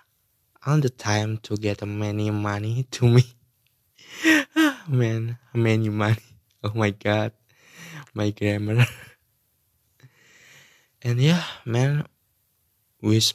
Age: 20-39